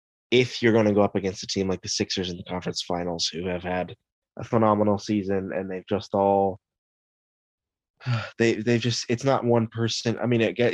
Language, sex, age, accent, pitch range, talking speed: English, male, 20-39, American, 95-110 Hz, 195 wpm